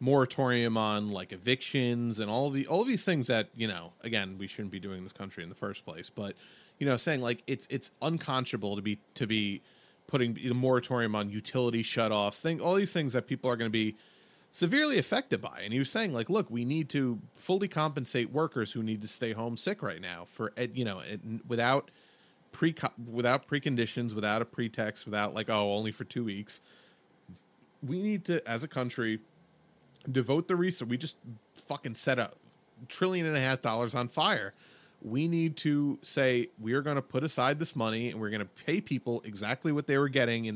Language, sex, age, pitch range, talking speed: English, male, 30-49, 110-140 Hz, 205 wpm